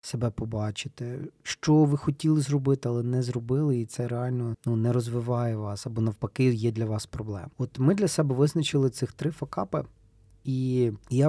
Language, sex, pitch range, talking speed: Ukrainian, male, 115-145 Hz, 170 wpm